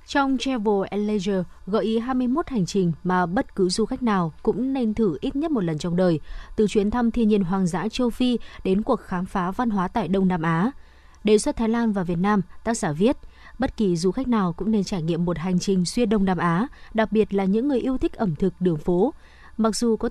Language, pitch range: Vietnamese, 185-230 Hz